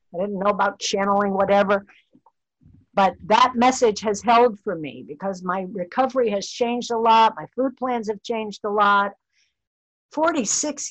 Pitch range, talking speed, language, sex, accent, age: 175-225 Hz, 155 wpm, English, female, American, 60-79